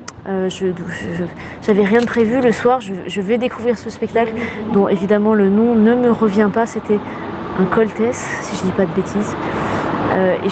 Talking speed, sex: 205 wpm, female